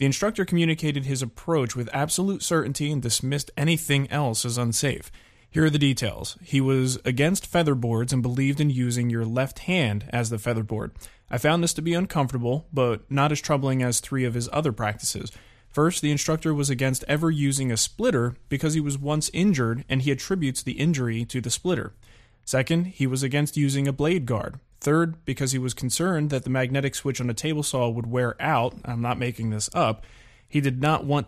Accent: American